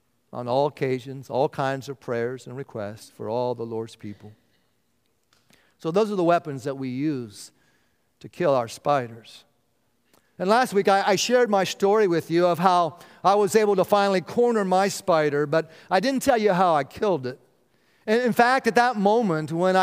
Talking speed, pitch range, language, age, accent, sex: 185 wpm, 130-185 Hz, English, 50-69, American, male